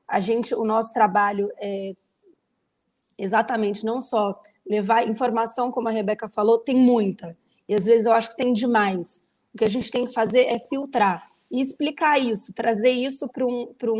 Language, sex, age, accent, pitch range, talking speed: Portuguese, female, 20-39, Brazilian, 215-255 Hz, 160 wpm